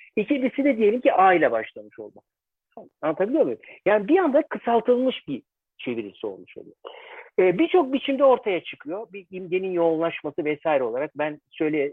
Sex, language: male, Turkish